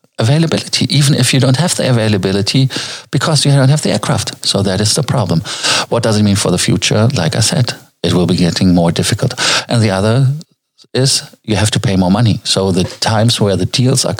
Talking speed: 220 wpm